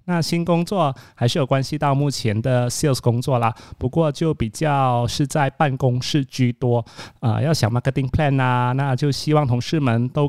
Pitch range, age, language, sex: 120-150 Hz, 30-49, Chinese, male